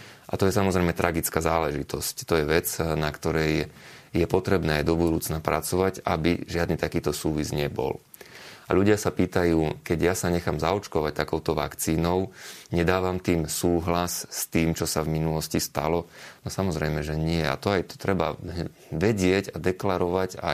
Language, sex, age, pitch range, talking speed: Slovak, male, 30-49, 80-90 Hz, 165 wpm